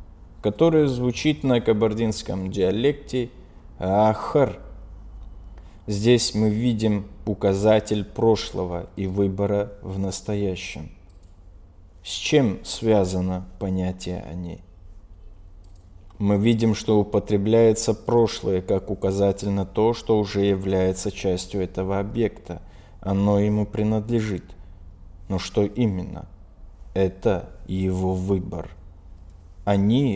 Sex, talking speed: male, 90 wpm